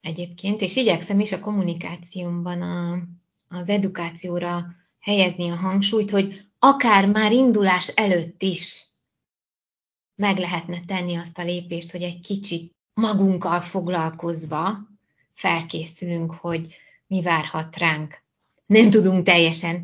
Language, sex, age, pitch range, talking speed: Hungarian, female, 20-39, 175-210 Hz, 110 wpm